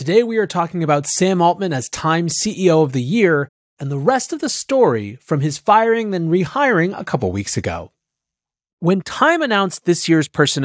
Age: 30-49